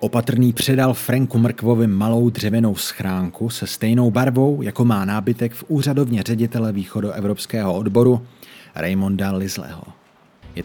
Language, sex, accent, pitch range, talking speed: Czech, male, native, 105-125 Hz, 120 wpm